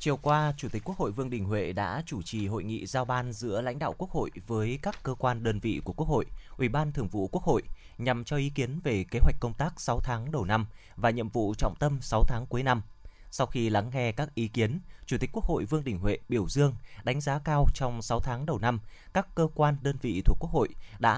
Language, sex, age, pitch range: Vietnamese, male, 20-39, 110-150 Hz